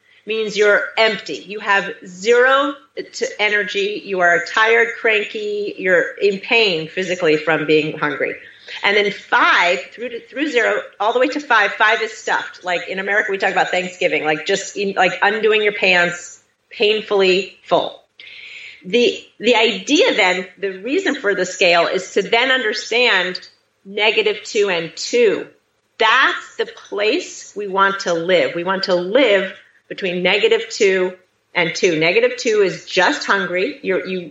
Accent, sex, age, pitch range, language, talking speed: American, female, 40-59, 180-255 Hz, English, 155 wpm